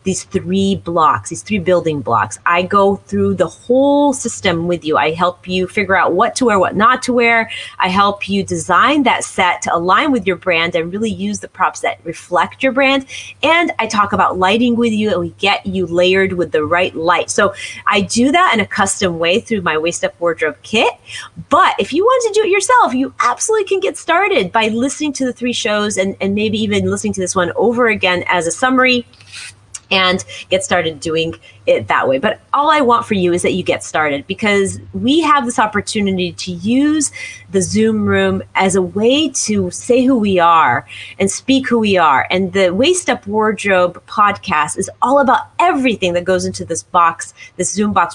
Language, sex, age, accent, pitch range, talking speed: English, female, 30-49, American, 180-245 Hz, 210 wpm